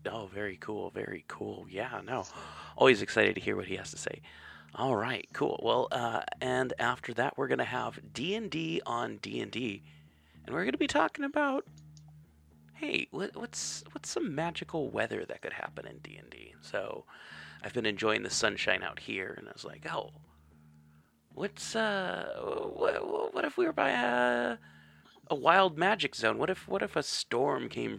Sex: male